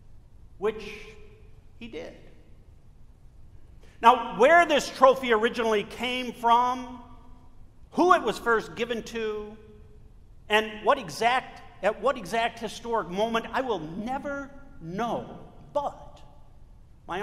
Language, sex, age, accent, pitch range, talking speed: English, male, 50-69, American, 170-230 Hz, 105 wpm